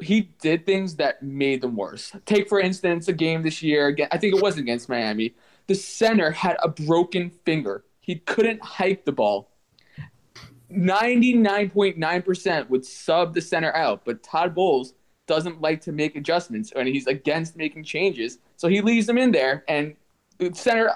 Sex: male